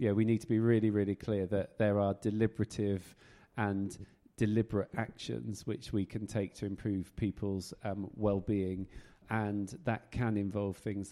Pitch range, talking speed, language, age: 100-110 Hz, 155 wpm, English, 40-59